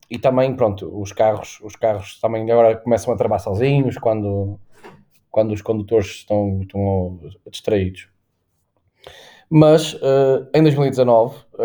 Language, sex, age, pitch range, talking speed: Portuguese, male, 20-39, 105-130 Hz, 115 wpm